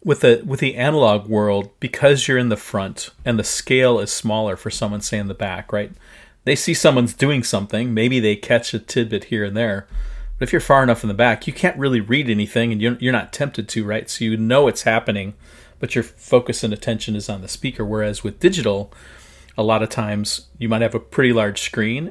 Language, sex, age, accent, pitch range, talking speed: English, male, 40-59, American, 105-125 Hz, 230 wpm